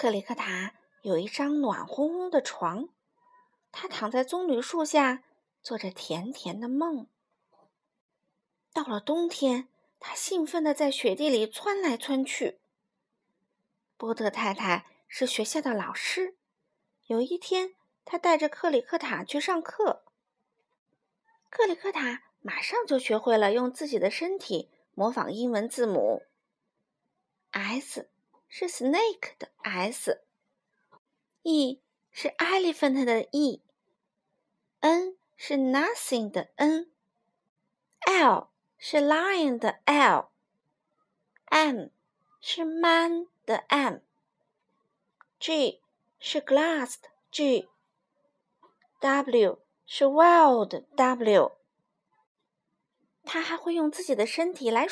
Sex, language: female, Chinese